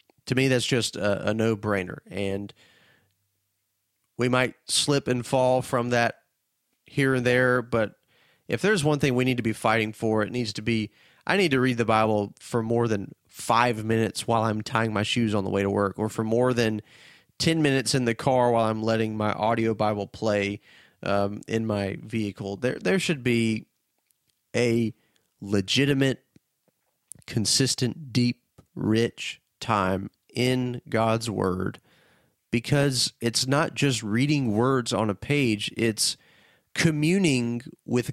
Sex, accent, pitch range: male, American, 110-130 Hz